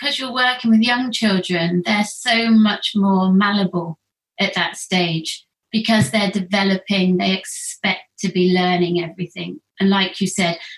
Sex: female